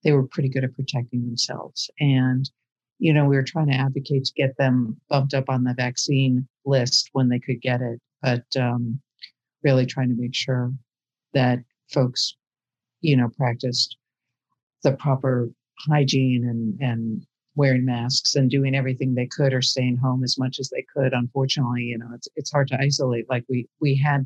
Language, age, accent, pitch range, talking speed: English, 50-69, American, 125-140 Hz, 180 wpm